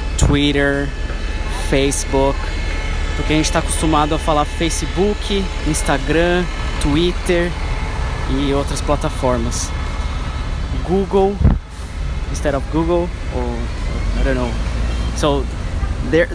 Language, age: Portuguese, 20-39